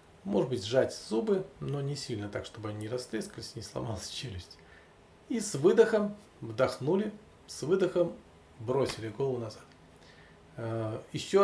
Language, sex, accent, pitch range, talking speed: Russian, male, native, 105-155 Hz, 130 wpm